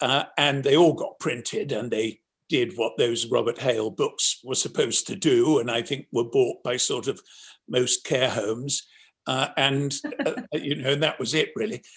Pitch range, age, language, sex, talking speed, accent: 140-200 Hz, 60-79, English, male, 190 wpm, British